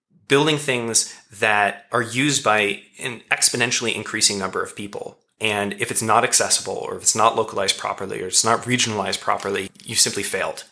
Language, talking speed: English, 180 wpm